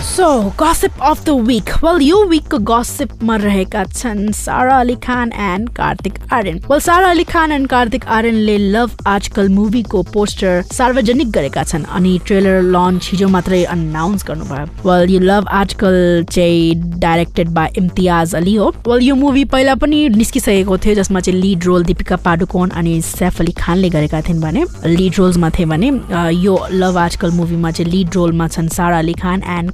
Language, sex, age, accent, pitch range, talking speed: English, female, 20-39, Indian, 170-215 Hz, 120 wpm